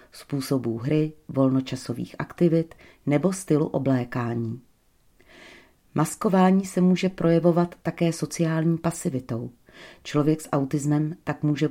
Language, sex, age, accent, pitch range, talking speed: Czech, female, 40-59, native, 135-175 Hz, 95 wpm